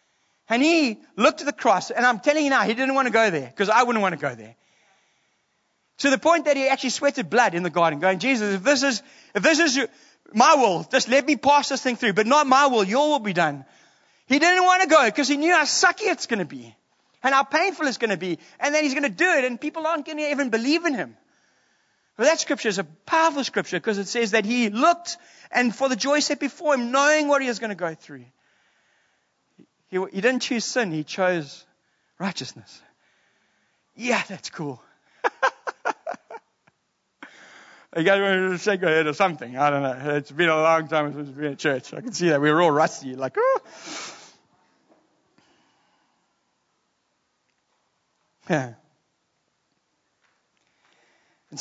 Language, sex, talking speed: English, male, 195 wpm